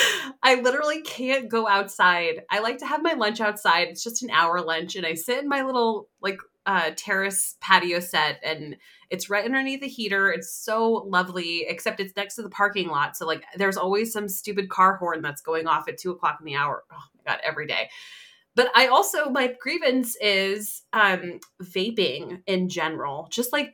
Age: 20-39